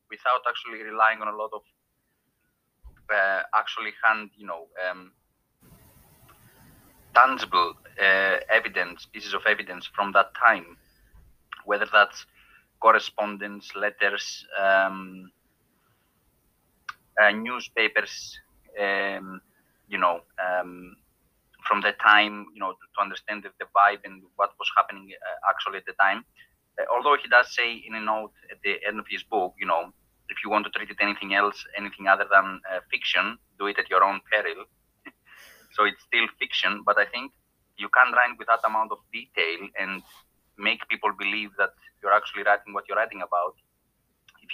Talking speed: 155 wpm